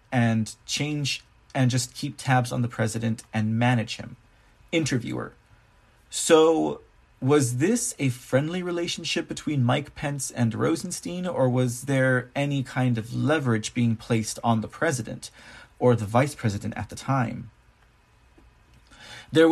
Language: English